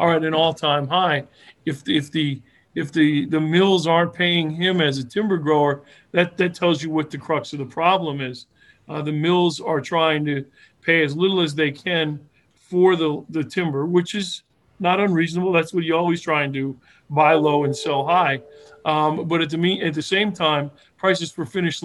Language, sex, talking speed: English, male, 205 wpm